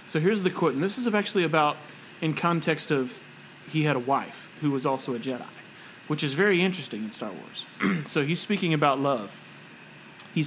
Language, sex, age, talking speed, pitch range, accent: English, male, 30-49, 195 wpm, 140-175 Hz, American